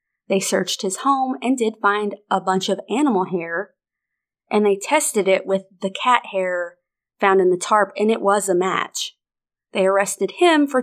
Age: 30-49